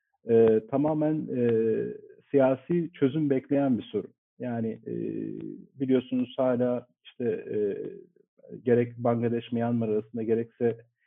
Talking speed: 100 wpm